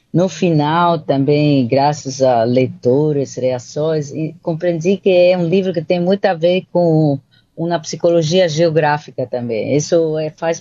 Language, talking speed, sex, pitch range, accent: Portuguese, 145 wpm, female, 140-170 Hz, Brazilian